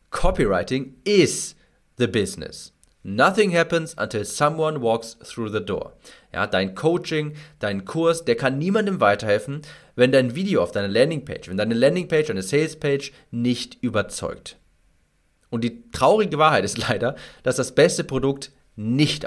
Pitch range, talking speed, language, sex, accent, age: 110-150 Hz, 135 wpm, German, male, German, 40-59